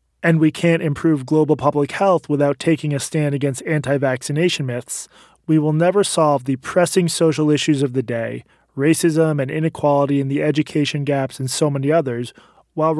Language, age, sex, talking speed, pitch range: English, 20-39, male, 170 wpm, 140-170 Hz